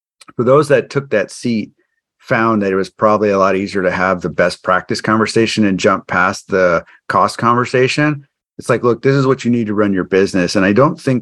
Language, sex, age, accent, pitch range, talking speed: English, male, 40-59, American, 95-120 Hz, 225 wpm